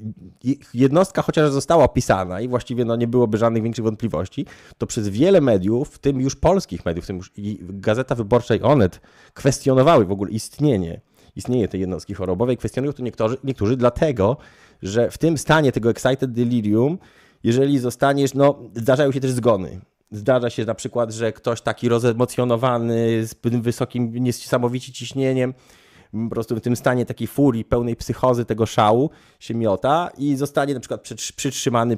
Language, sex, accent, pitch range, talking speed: Polish, male, native, 105-130 Hz, 165 wpm